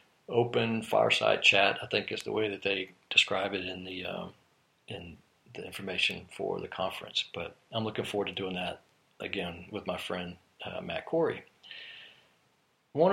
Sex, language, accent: male, English, American